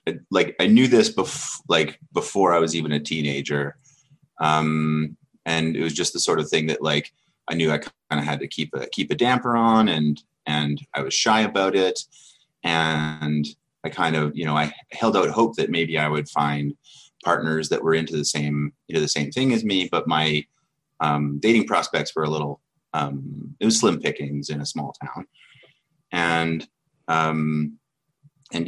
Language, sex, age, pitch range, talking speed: English, male, 30-49, 75-90 Hz, 190 wpm